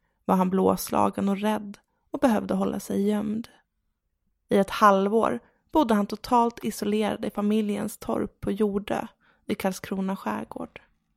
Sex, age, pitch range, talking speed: female, 20-39, 205-235 Hz, 135 wpm